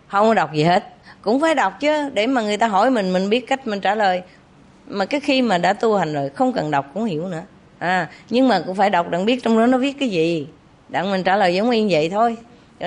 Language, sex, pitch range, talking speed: English, female, 160-225 Hz, 270 wpm